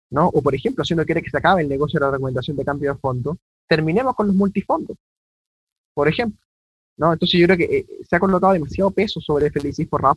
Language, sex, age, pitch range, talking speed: Spanish, male, 20-39, 130-165 Hz, 230 wpm